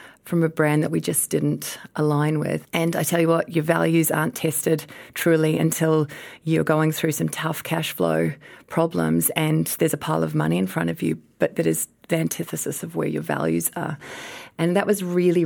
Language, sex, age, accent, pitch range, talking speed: English, female, 30-49, Australian, 155-180 Hz, 200 wpm